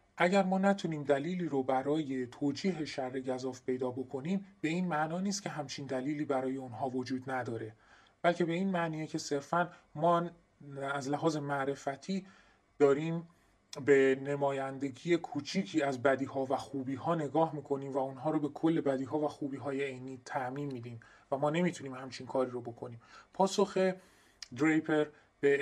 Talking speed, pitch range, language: 150 wpm, 130-165 Hz, Persian